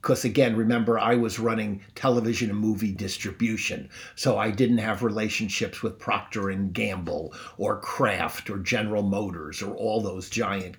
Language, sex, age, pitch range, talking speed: English, male, 50-69, 105-125 Hz, 150 wpm